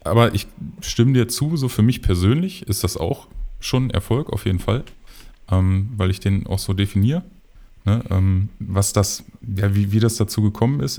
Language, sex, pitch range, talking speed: German, male, 95-110 Hz, 195 wpm